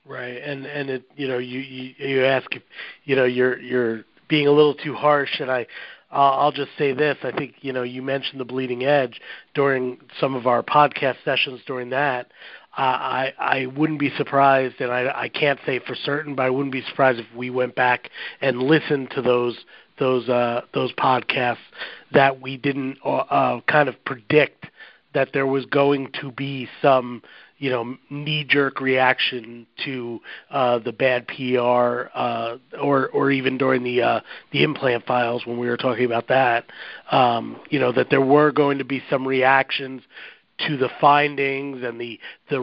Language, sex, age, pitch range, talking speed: English, male, 40-59, 125-140 Hz, 185 wpm